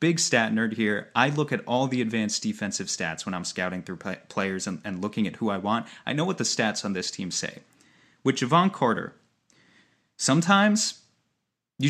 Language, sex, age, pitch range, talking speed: English, male, 30-49, 105-135 Hz, 190 wpm